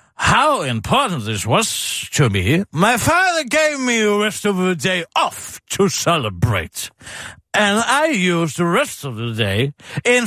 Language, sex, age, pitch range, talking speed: Danish, male, 50-69, 145-235 Hz, 160 wpm